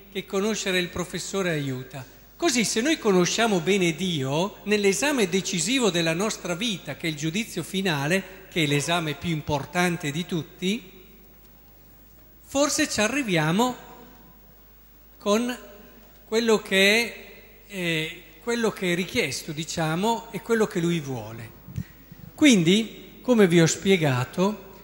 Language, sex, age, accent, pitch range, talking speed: Italian, male, 50-69, native, 165-215 Hz, 125 wpm